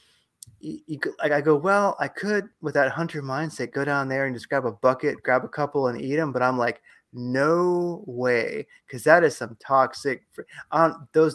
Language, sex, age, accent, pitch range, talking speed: English, male, 30-49, American, 125-155 Hz, 180 wpm